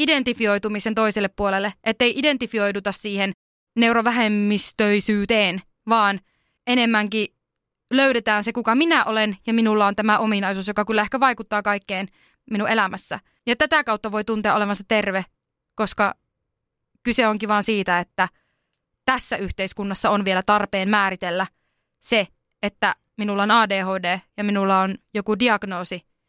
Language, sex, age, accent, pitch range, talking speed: Finnish, female, 20-39, native, 205-270 Hz, 125 wpm